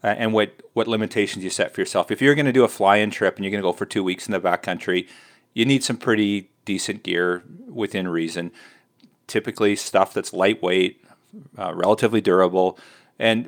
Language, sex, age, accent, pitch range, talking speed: English, male, 40-59, American, 95-120 Hz, 195 wpm